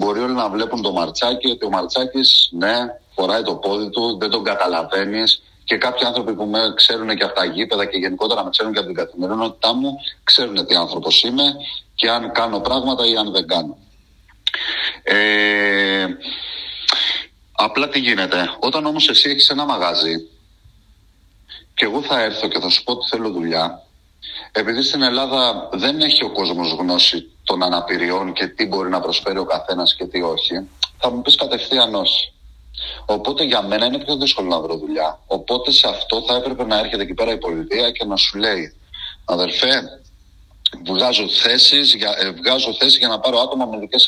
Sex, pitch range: male, 95-130 Hz